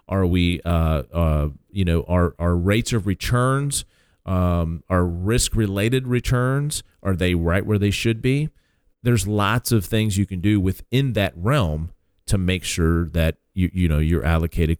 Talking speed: 165 wpm